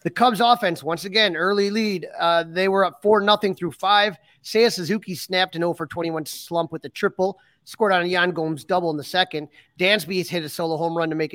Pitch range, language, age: 165-205 Hz, English, 30-49